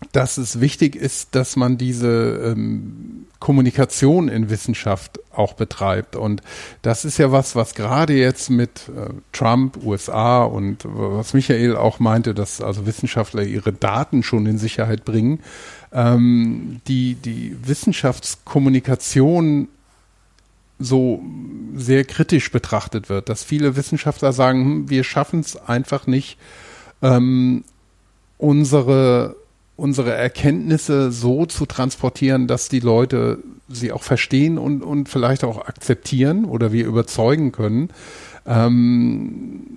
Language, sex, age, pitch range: German, male, 50-69, 115-140 Hz